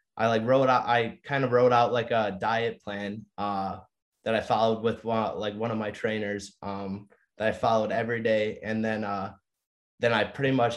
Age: 20-39